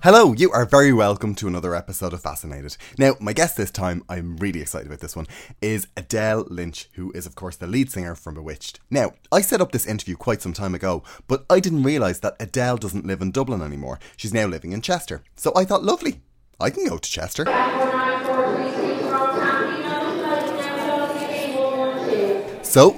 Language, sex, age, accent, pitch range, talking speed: English, male, 30-49, Irish, 85-125 Hz, 180 wpm